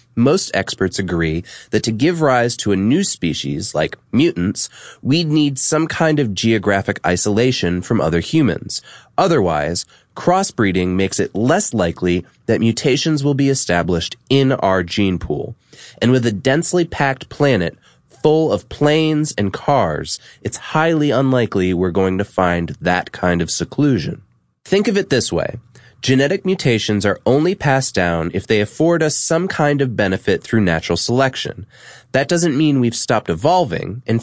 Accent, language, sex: American, English, male